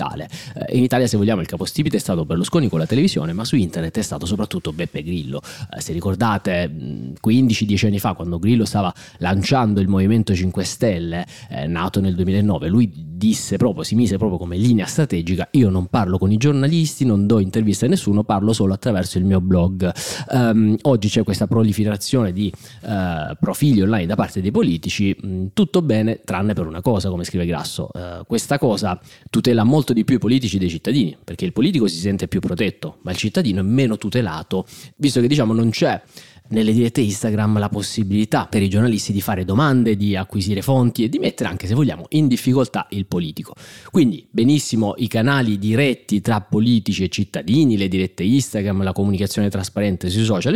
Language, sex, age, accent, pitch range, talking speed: Italian, male, 30-49, native, 95-125 Hz, 180 wpm